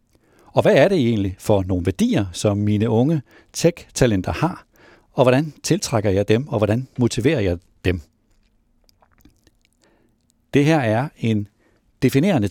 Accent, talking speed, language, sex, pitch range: native, 135 wpm, Danish, male, 110-150 Hz